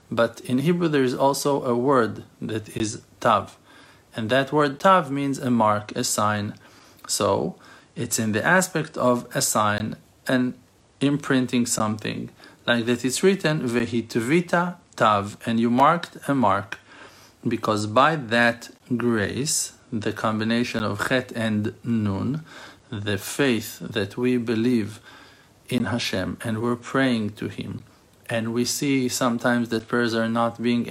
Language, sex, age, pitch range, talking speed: English, male, 50-69, 110-130 Hz, 140 wpm